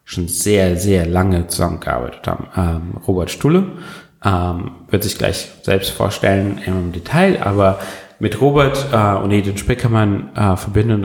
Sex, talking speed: male, 140 wpm